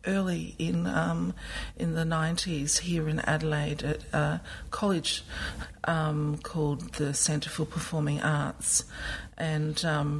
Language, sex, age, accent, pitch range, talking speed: English, female, 50-69, Australian, 145-165 Hz, 125 wpm